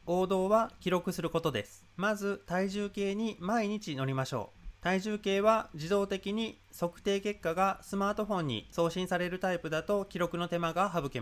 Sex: male